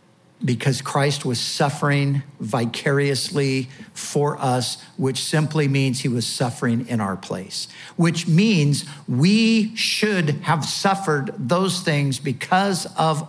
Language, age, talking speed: English, 60-79, 115 wpm